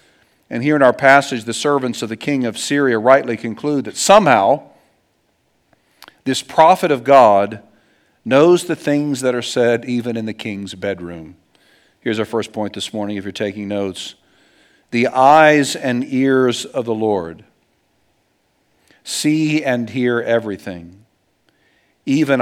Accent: American